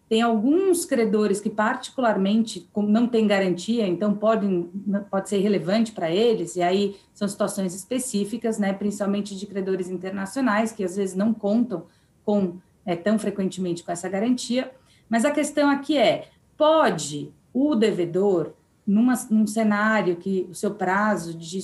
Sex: female